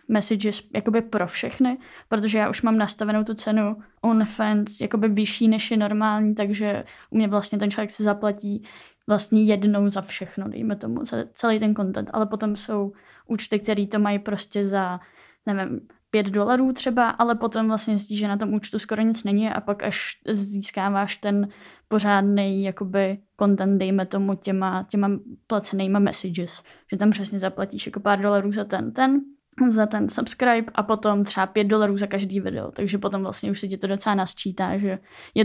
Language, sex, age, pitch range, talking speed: Czech, female, 20-39, 200-220 Hz, 180 wpm